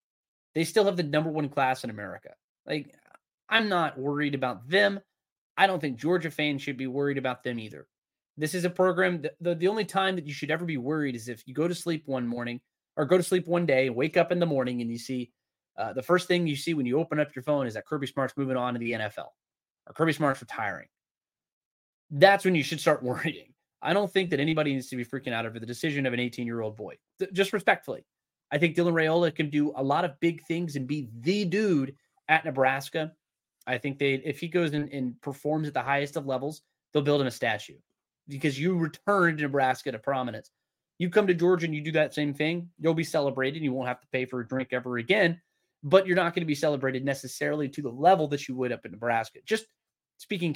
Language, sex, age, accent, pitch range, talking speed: English, male, 20-39, American, 130-170 Hz, 235 wpm